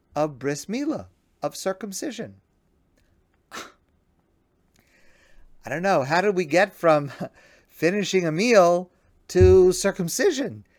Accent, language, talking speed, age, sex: American, English, 100 wpm, 50-69, male